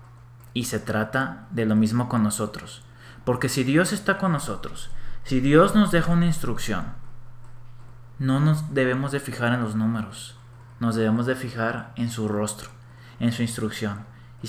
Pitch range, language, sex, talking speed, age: 115-135 Hz, Spanish, male, 160 wpm, 30-49